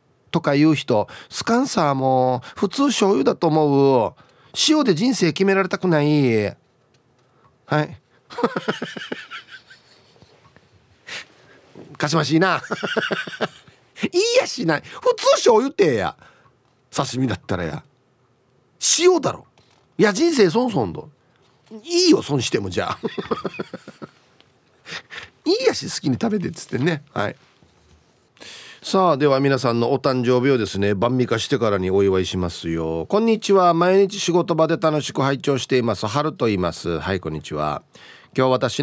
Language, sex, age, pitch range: Japanese, male, 40-59, 120-175 Hz